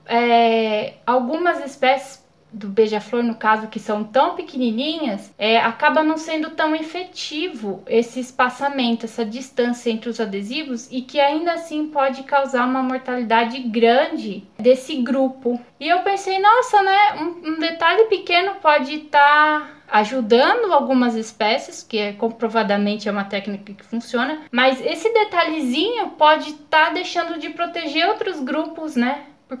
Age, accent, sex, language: 10-29, Brazilian, female, Portuguese